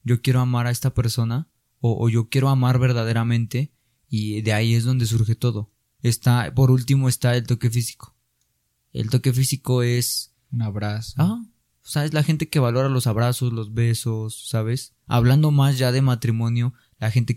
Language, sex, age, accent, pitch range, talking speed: Spanish, male, 20-39, Mexican, 120-145 Hz, 180 wpm